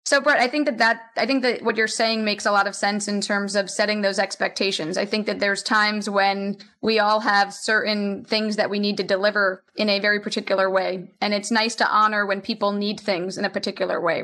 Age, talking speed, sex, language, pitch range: 20-39, 240 wpm, female, English, 200-230 Hz